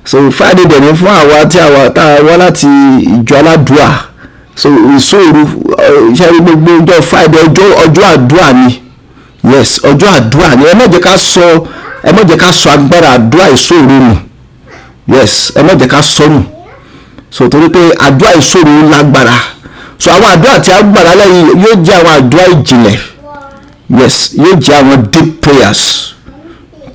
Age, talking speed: 50-69, 75 wpm